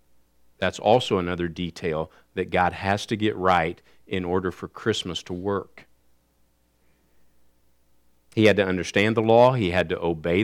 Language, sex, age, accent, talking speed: English, male, 50-69, American, 150 wpm